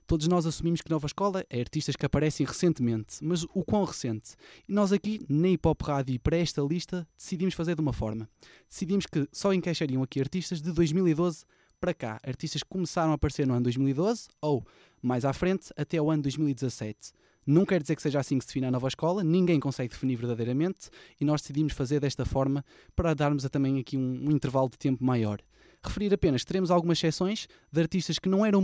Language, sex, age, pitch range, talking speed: Portuguese, male, 20-39, 135-170 Hz, 205 wpm